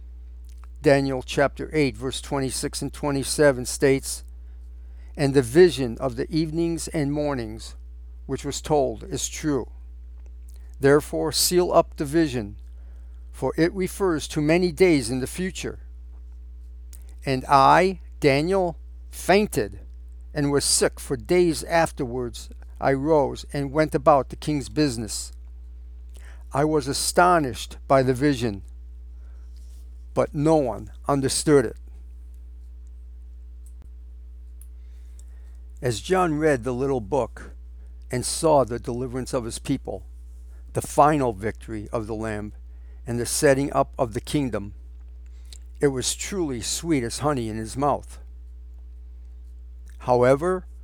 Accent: American